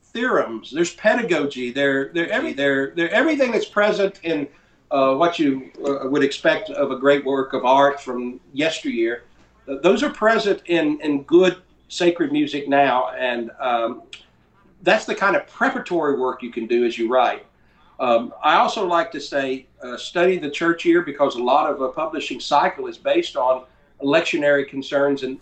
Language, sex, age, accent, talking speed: English, male, 50-69, American, 165 wpm